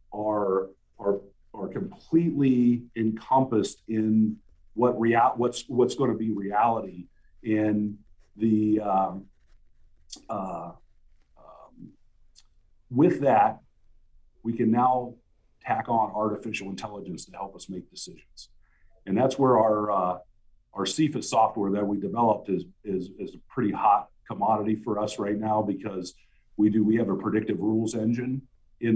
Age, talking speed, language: 50-69, 135 wpm, English